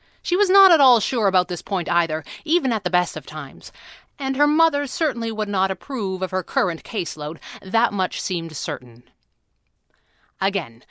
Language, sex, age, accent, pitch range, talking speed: English, female, 30-49, American, 175-250 Hz, 175 wpm